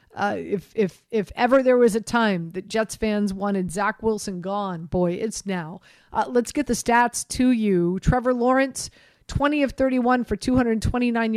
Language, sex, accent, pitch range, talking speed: English, female, American, 205-245 Hz, 175 wpm